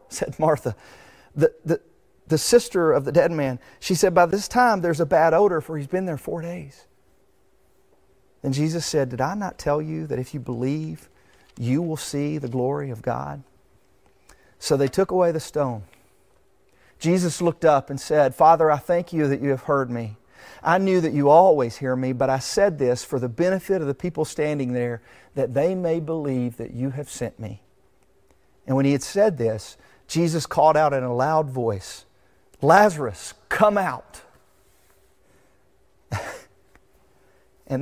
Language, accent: English, American